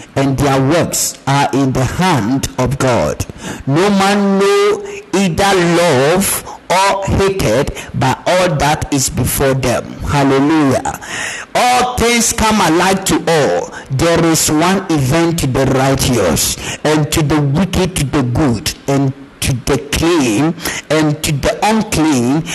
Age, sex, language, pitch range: 50-69, male, Japanese, 135-180 Hz